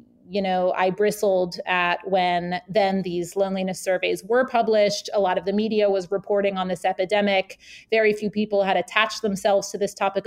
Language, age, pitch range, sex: English, 30-49, 185-220 Hz, female